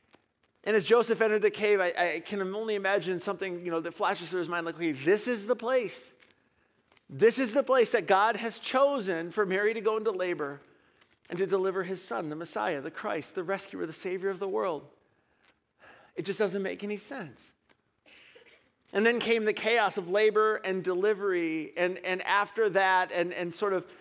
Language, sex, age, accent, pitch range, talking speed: English, male, 40-59, American, 180-240 Hz, 190 wpm